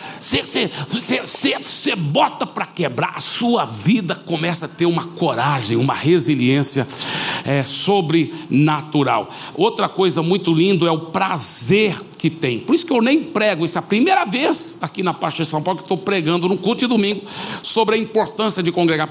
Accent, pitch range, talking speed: Brazilian, 160-260 Hz, 165 wpm